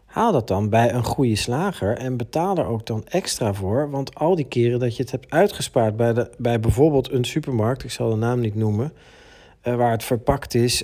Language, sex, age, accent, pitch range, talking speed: Dutch, male, 40-59, Dutch, 110-145 Hz, 210 wpm